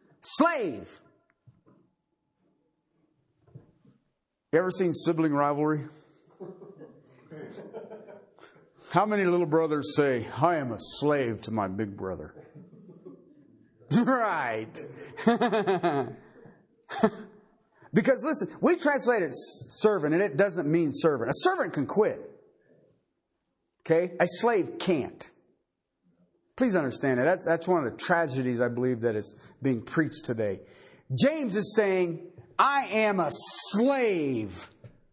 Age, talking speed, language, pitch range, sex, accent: 50-69, 105 wpm, English, 130-195 Hz, male, American